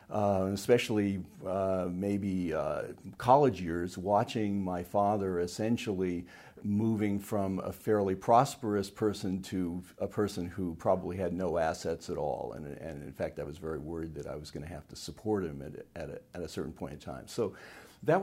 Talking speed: 175 wpm